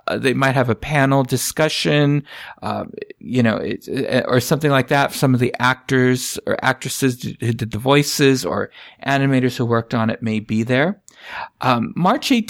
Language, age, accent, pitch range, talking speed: English, 50-69, American, 120-160 Hz, 180 wpm